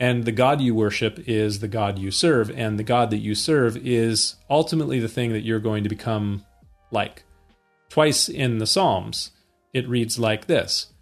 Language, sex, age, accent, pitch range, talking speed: English, male, 40-59, American, 105-125 Hz, 185 wpm